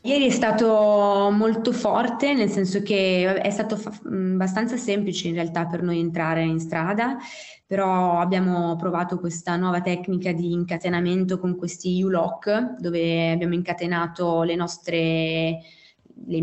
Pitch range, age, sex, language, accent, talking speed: 165-195 Hz, 20-39, female, Italian, native, 140 wpm